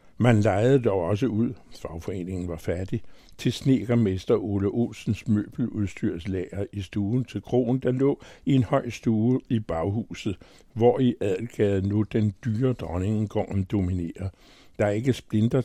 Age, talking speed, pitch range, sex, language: 60-79, 140 wpm, 95-120 Hz, male, Danish